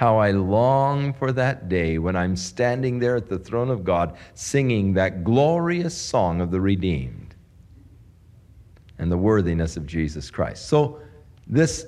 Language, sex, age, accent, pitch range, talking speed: English, male, 50-69, American, 95-140 Hz, 150 wpm